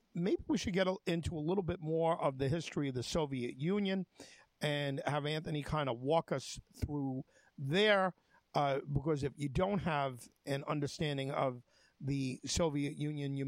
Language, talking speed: English, 170 wpm